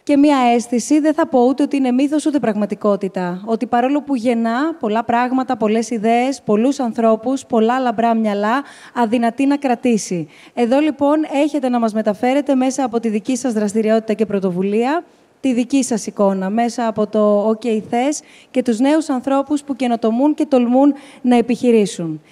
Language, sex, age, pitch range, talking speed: Greek, female, 20-39, 220-270 Hz, 165 wpm